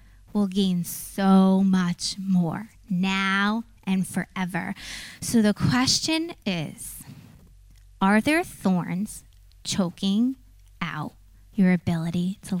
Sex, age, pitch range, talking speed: female, 20-39, 150-230 Hz, 95 wpm